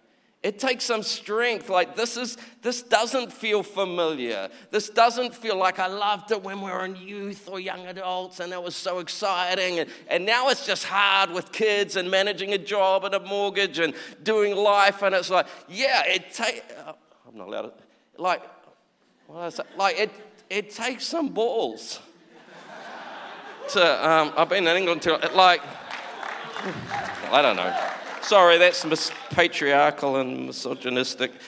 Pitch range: 175-220 Hz